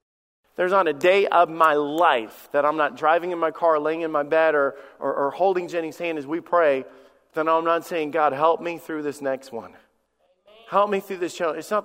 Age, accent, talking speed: 40-59, American, 230 wpm